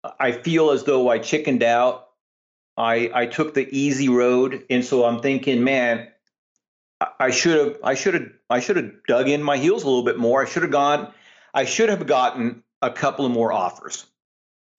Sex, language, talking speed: male, English, 195 wpm